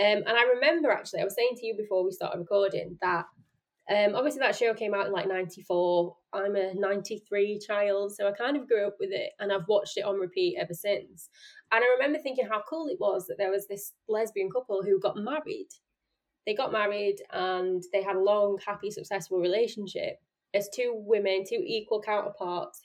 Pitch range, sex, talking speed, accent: 195-240 Hz, female, 205 wpm, British